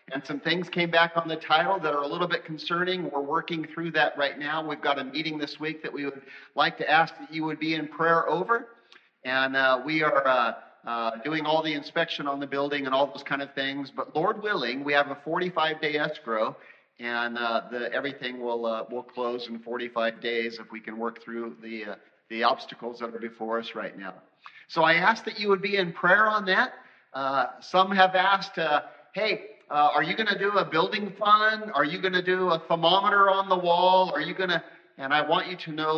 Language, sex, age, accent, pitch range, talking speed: English, male, 40-59, American, 125-170 Hz, 230 wpm